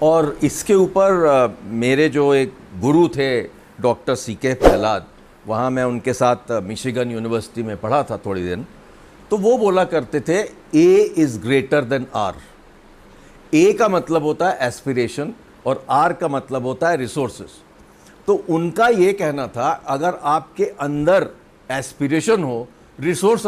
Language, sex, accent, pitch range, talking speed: English, male, Indian, 120-180 Hz, 145 wpm